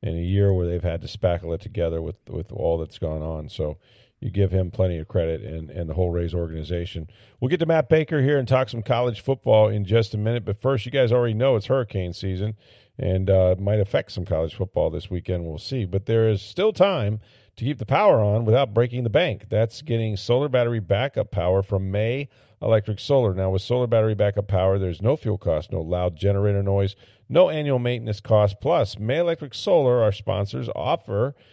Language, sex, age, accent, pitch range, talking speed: English, male, 40-59, American, 100-125 Hz, 215 wpm